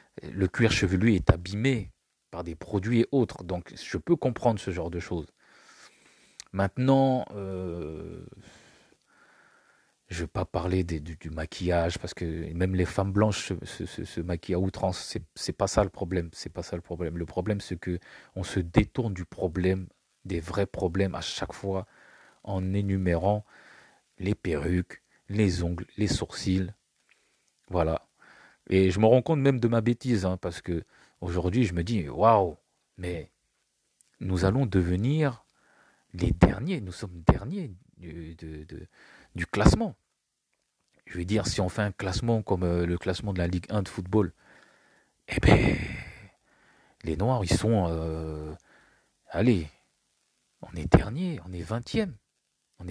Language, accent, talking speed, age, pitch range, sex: French, French, 155 wpm, 40-59, 85-110 Hz, male